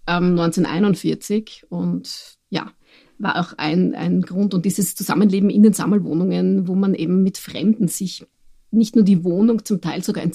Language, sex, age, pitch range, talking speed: German, female, 30-49, 170-205 Hz, 160 wpm